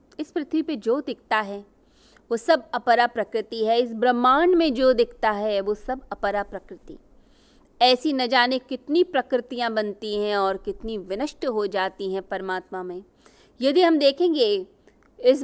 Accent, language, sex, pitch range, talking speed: native, Hindi, female, 210-280 Hz, 155 wpm